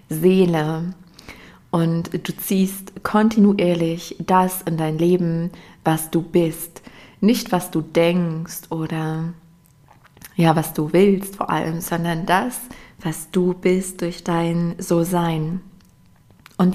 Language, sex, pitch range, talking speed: German, female, 170-190 Hz, 115 wpm